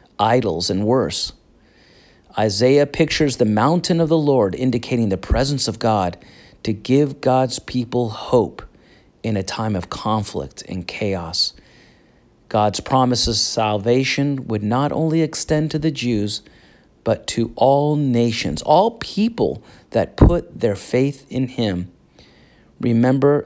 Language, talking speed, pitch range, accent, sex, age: English, 130 wpm, 105-140 Hz, American, male, 40-59